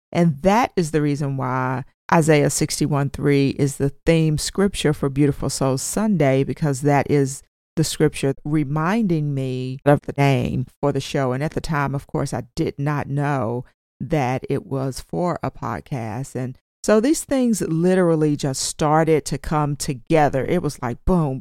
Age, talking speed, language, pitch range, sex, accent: 40-59, 165 wpm, English, 140-195 Hz, female, American